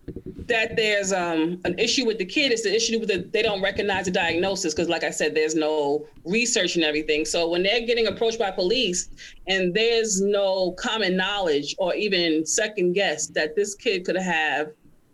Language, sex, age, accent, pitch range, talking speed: English, female, 40-59, American, 180-230 Hz, 190 wpm